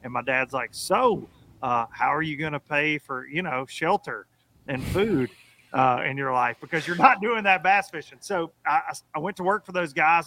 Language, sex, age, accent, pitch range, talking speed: English, male, 30-49, American, 135-165 Hz, 220 wpm